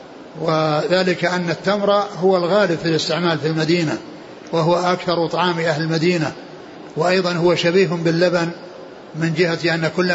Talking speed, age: 135 wpm, 60-79